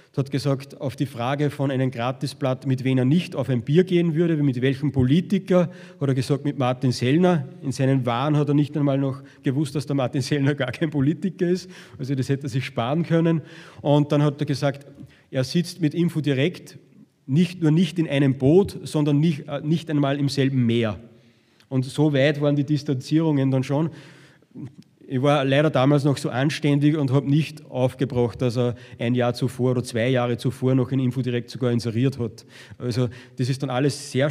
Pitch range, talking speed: 130-155 Hz, 200 wpm